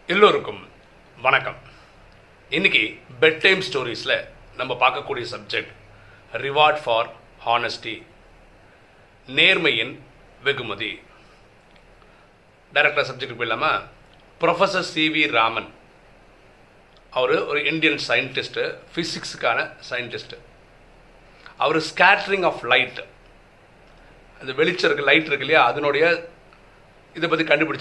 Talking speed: 75 wpm